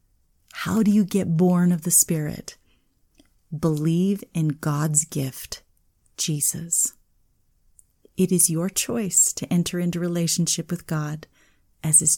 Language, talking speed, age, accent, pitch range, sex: English, 125 wpm, 30-49, American, 155-190 Hz, female